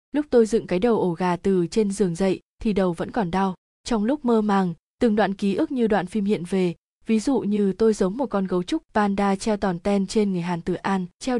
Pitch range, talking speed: 185-225 Hz, 255 wpm